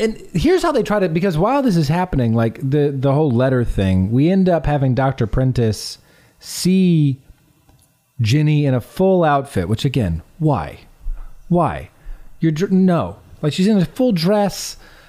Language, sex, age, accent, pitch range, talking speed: English, male, 30-49, American, 120-185 Hz, 165 wpm